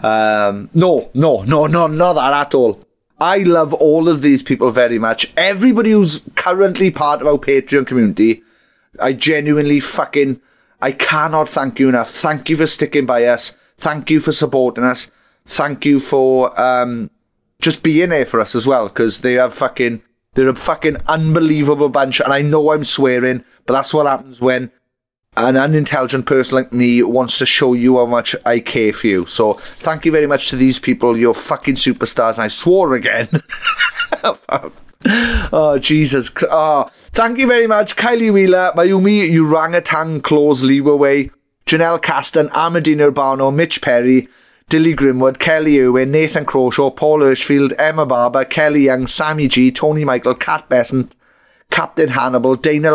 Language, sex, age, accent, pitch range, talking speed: English, male, 30-49, British, 125-160 Hz, 165 wpm